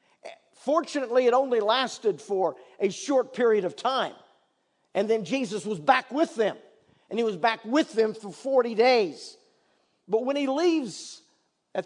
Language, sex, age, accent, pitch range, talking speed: English, male, 50-69, American, 200-275 Hz, 155 wpm